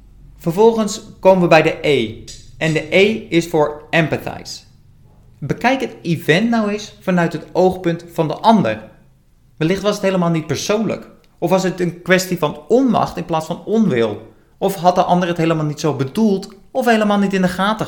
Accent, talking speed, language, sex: Dutch, 185 wpm, Dutch, male